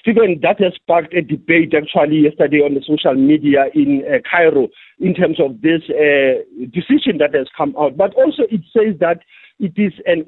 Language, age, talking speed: English, 50-69, 195 wpm